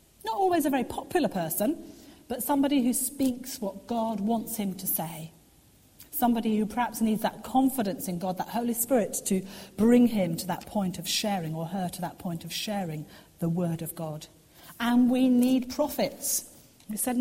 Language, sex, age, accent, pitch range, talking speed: English, female, 40-59, British, 175-260 Hz, 185 wpm